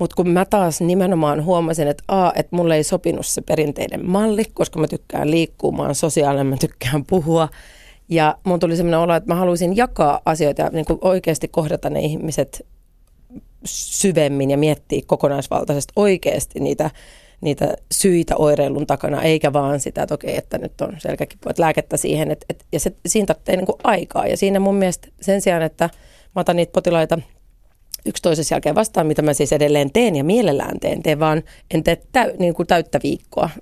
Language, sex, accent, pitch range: Finnish, female, native, 150-180 Hz